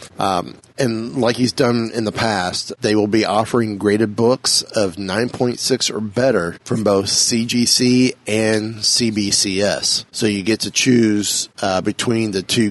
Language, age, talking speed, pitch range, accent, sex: English, 30-49, 150 wpm, 100-125 Hz, American, male